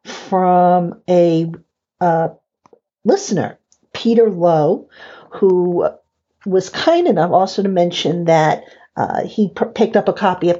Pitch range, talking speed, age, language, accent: 180-215 Hz, 125 wpm, 50-69, English, American